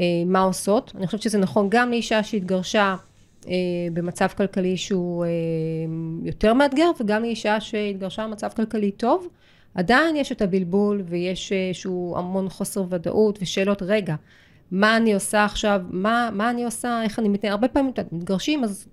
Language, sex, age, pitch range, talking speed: Hebrew, female, 30-49, 185-235 Hz, 145 wpm